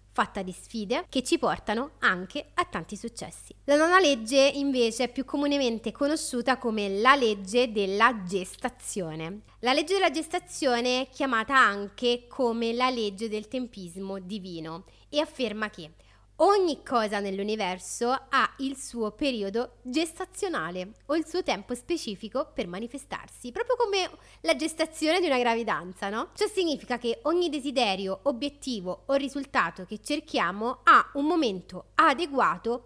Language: Italian